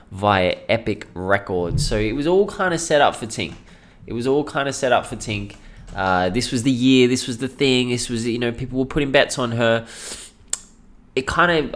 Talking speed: 225 wpm